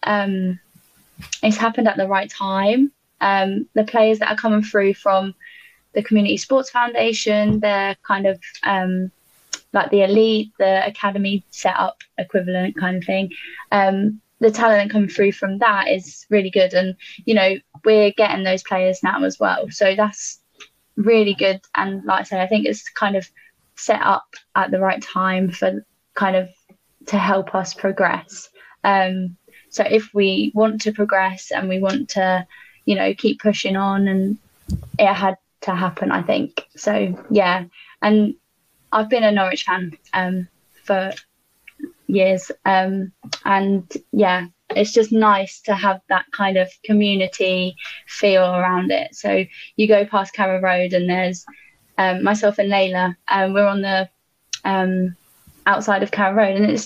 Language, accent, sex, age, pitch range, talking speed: English, British, female, 10-29, 185-210 Hz, 160 wpm